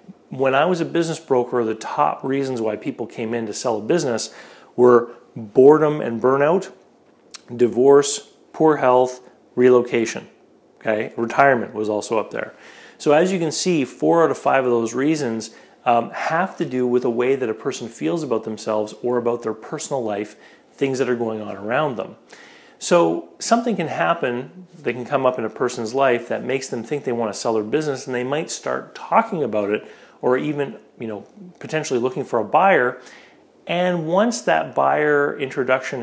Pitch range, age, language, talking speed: 115-150 Hz, 40-59, English, 185 wpm